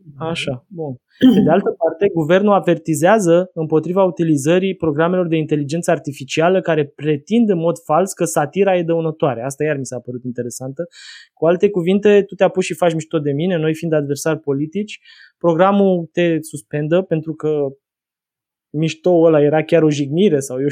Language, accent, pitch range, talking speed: Romanian, native, 145-185 Hz, 160 wpm